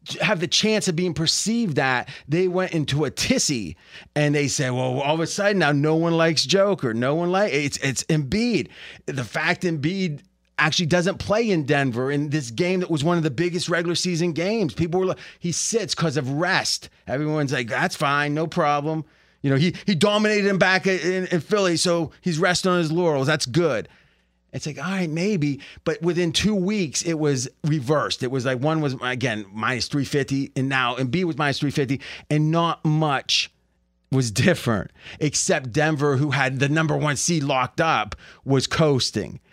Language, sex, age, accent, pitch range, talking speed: English, male, 30-49, American, 140-180 Hz, 190 wpm